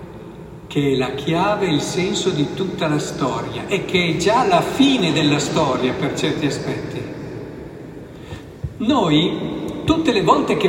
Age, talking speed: 50-69, 145 wpm